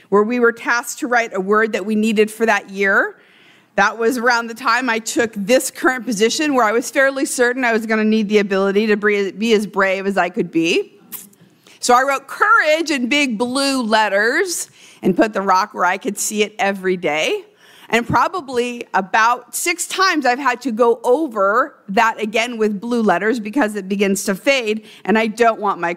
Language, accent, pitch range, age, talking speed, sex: English, American, 210-275 Hz, 50-69, 200 wpm, female